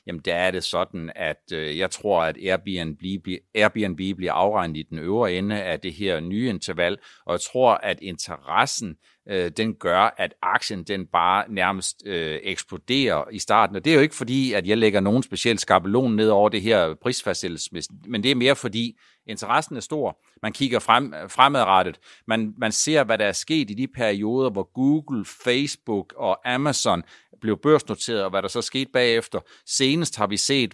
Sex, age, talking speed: male, 60-79, 180 wpm